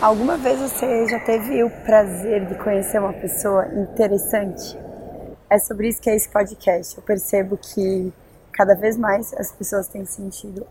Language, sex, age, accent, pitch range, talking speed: Portuguese, female, 20-39, Brazilian, 200-235 Hz, 165 wpm